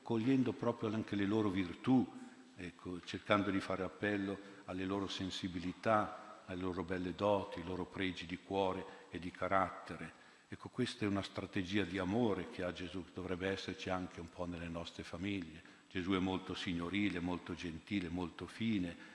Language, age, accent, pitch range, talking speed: Italian, 50-69, native, 90-105 Hz, 165 wpm